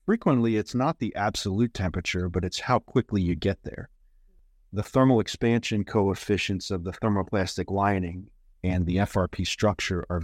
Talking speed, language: 150 wpm, English